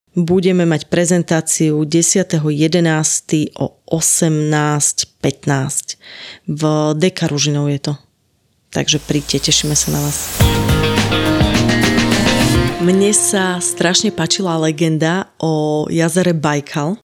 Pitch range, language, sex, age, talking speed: 155-190 Hz, Slovak, female, 30-49, 85 wpm